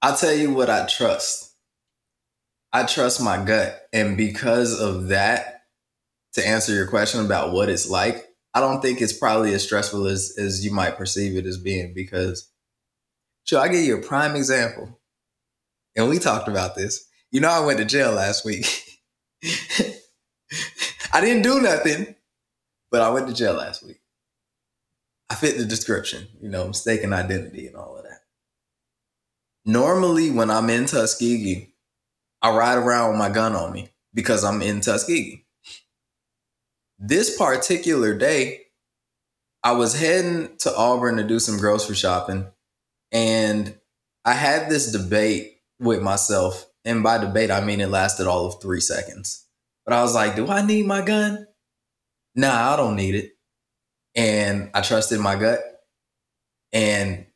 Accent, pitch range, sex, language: American, 100-120 Hz, male, English